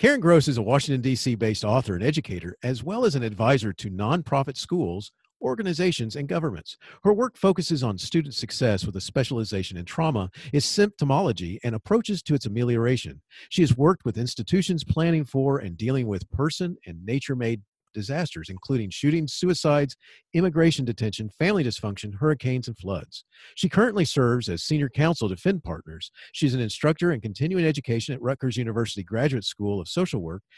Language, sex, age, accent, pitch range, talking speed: English, male, 40-59, American, 110-165 Hz, 165 wpm